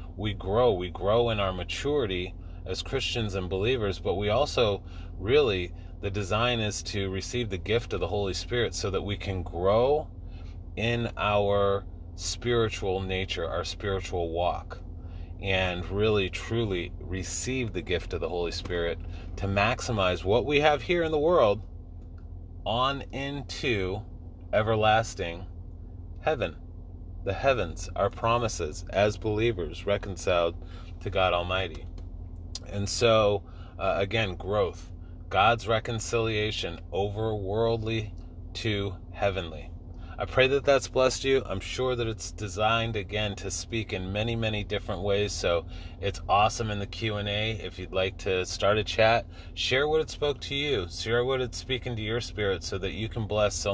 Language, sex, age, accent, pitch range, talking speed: English, male, 30-49, American, 85-110 Hz, 145 wpm